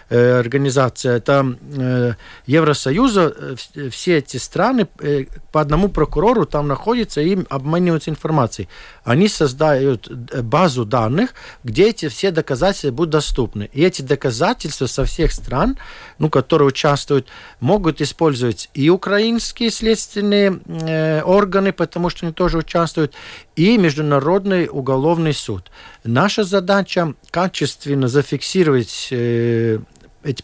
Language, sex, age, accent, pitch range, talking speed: Russian, male, 50-69, native, 135-185 Hz, 115 wpm